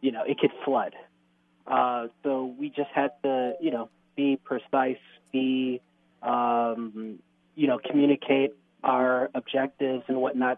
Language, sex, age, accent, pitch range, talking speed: English, male, 20-39, American, 120-135 Hz, 135 wpm